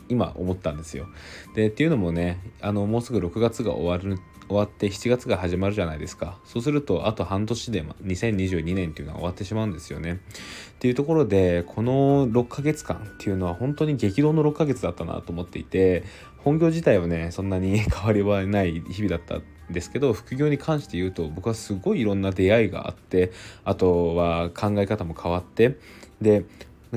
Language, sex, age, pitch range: Japanese, male, 20-39, 85-115 Hz